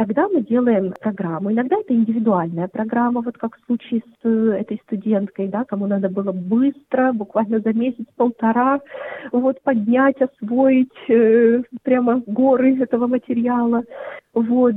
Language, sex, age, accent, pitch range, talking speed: Russian, female, 30-49, native, 210-265 Hz, 135 wpm